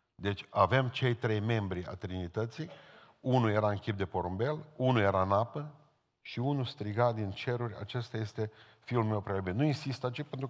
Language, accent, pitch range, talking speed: Romanian, native, 115-135 Hz, 175 wpm